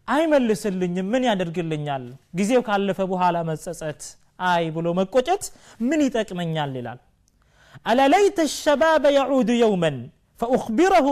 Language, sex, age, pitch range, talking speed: Amharic, male, 30-49, 160-250 Hz, 110 wpm